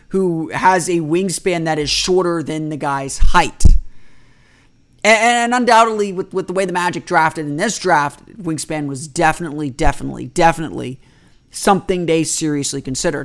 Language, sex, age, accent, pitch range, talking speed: English, male, 30-49, American, 145-180 Hz, 150 wpm